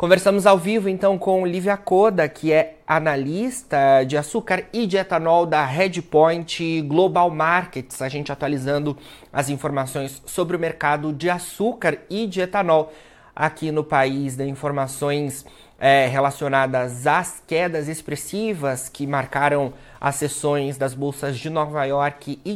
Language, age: Portuguese, 30-49